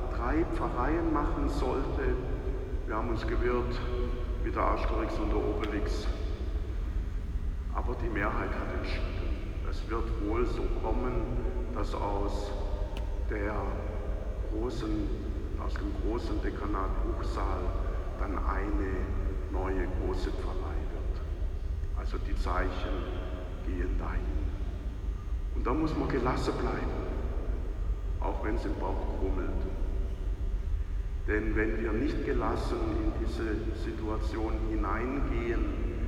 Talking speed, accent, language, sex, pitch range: 105 wpm, German, German, male, 80-95 Hz